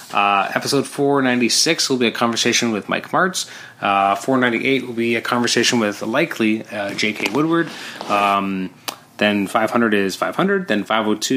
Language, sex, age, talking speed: English, male, 20-39, 150 wpm